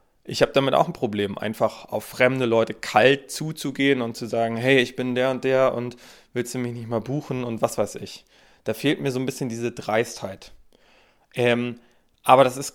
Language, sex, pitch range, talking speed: German, male, 120-145 Hz, 205 wpm